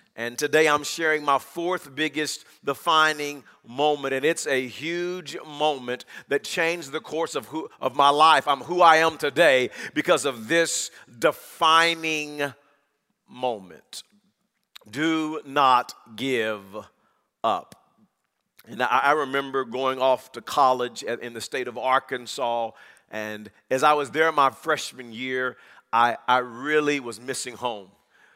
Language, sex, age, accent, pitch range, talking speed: English, male, 40-59, American, 130-165 Hz, 135 wpm